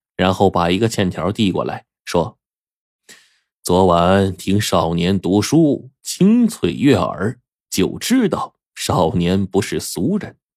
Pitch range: 90-130 Hz